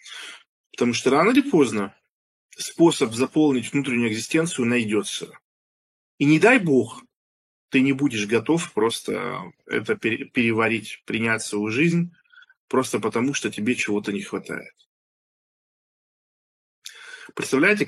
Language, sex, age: Russian, male, 20-39